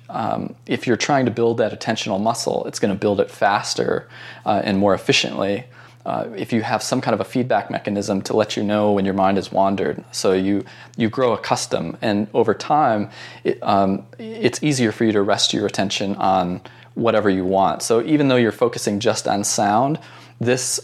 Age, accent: 20-39, American